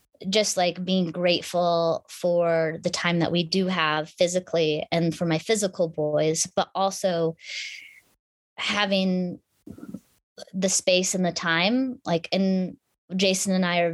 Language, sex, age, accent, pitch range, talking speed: English, female, 20-39, American, 170-195 Hz, 135 wpm